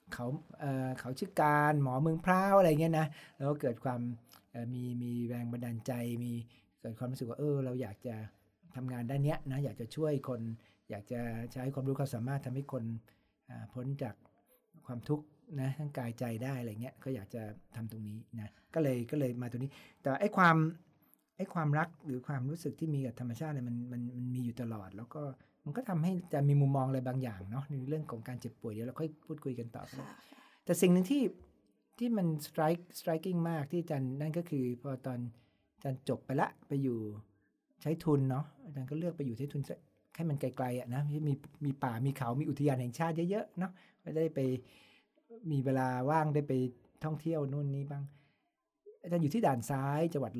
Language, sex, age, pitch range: Thai, male, 60-79, 120-155 Hz